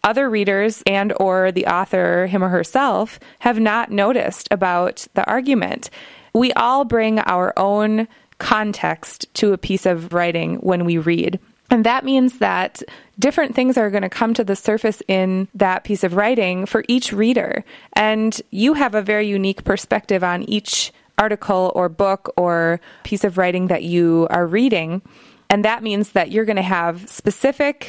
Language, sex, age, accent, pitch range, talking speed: English, female, 20-39, American, 185-230 Hz, 170 wpm